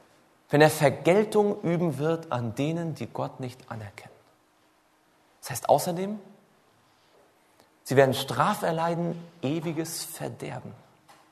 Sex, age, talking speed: male, 40-59, 105 wpm